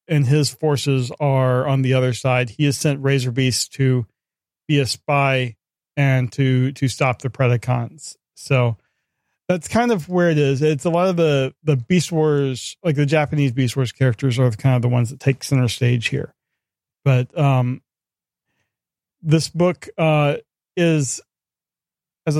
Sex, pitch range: male, 130-155 Hz